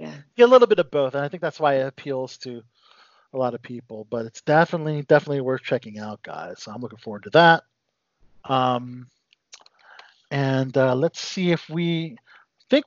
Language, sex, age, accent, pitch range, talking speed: English, male, 40-59, American, 135-190 Hz, 185 wpm